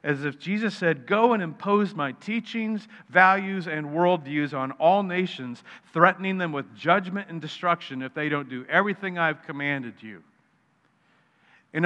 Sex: male